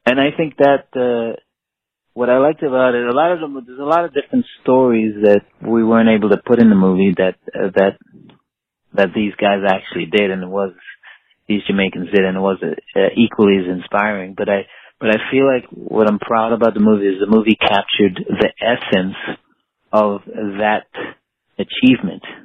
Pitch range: 95-115 Hz